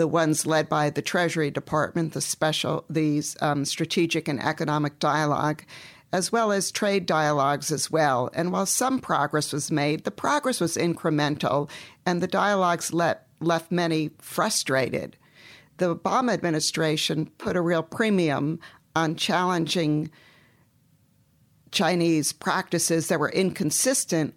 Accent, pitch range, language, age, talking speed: American, 155-195 Hz, English, 50-69, 130 wpm